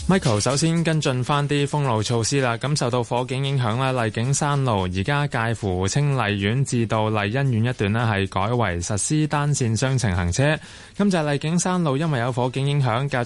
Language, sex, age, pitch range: Chinese, male, 20-39, 110-145 Hz